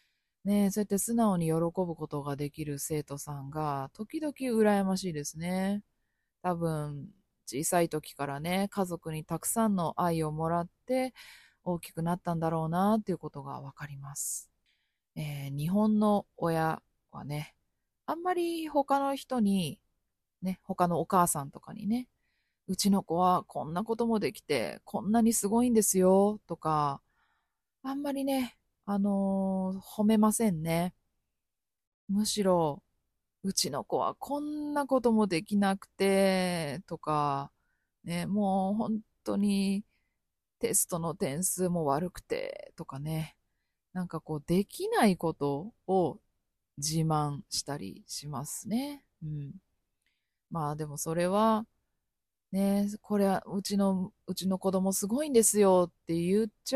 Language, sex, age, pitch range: Japanese, female, 20-39, 160-215 Hz